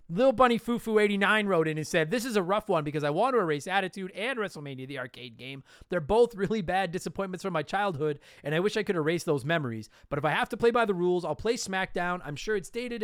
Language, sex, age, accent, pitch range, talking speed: English, male, 30-49, American, 155-215 Hz, 260 wpm